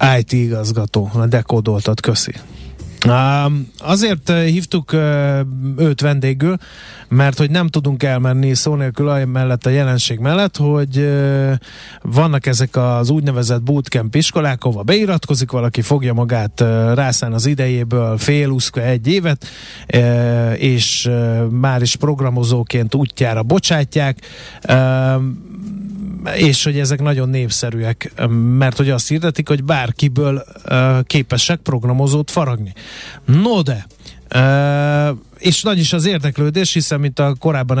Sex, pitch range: male, 120-145 Hz